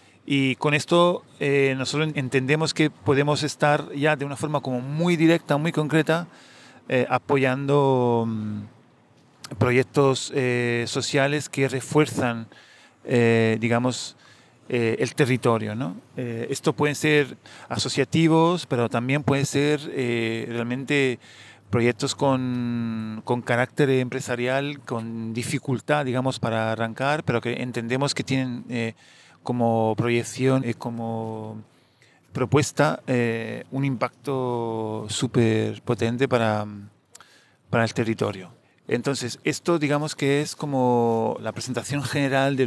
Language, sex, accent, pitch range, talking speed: Spanish, male, Argentinian, 120-140 Hz, 115 wpm